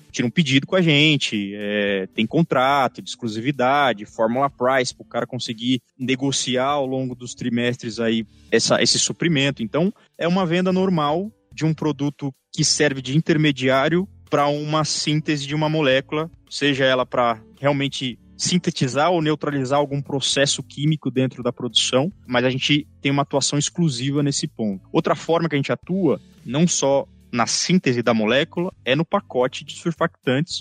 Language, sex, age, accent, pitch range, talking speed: Portuguese, male, 20-39, Brazilian, 120-155 Hz, 155 wpm